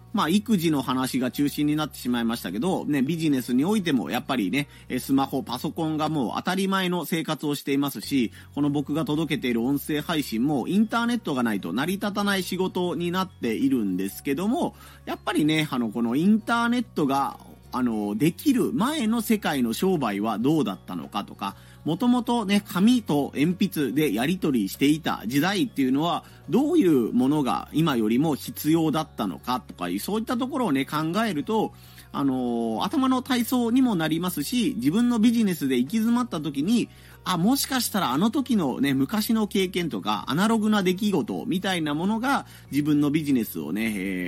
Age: 40-59